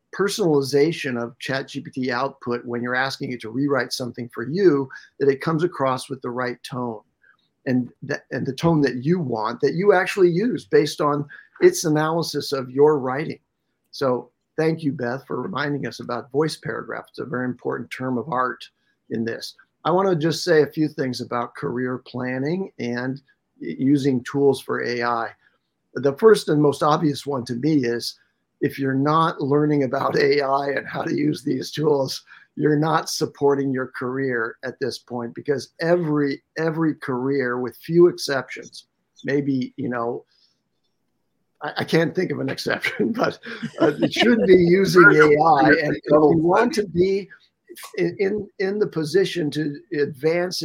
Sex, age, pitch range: male, 50-69, 130-160 Hz